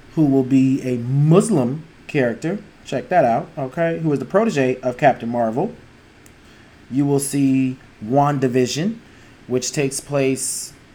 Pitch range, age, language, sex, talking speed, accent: 115-135 Hz, 20-39, English, male, 135 wpm, American